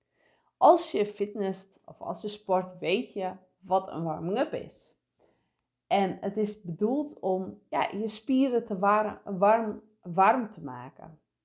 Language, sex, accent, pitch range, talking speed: English, female, Dutch, 195-275 Hz, 125 wpm